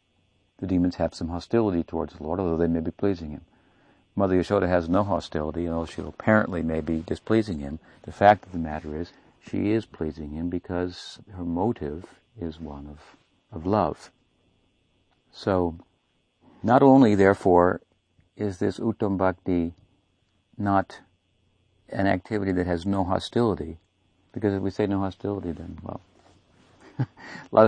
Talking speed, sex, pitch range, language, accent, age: 145 wpm, male, 85-100 Hz, English, American, 60-79